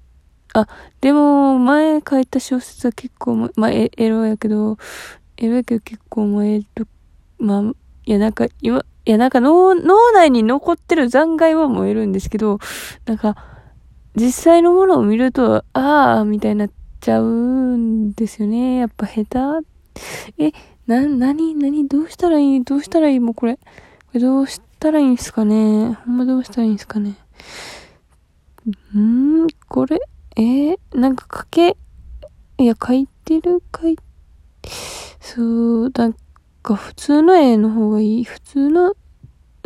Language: Japanese